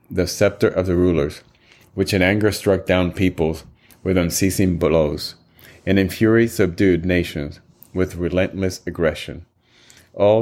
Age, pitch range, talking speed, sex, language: 30-49, 85-100 Hz, 130 wpm, male, English